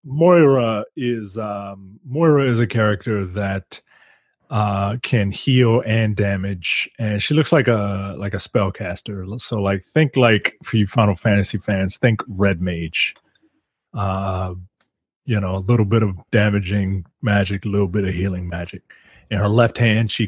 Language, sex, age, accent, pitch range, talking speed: English, male, 30-49, American, 95-115 Hz, 155 wpm